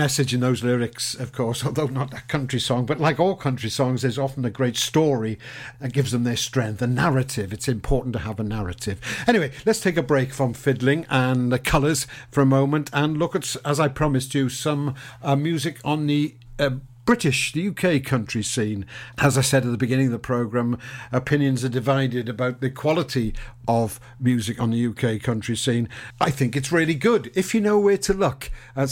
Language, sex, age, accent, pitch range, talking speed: English, male, 50-69, British, 120-140 Hz, 205 wpm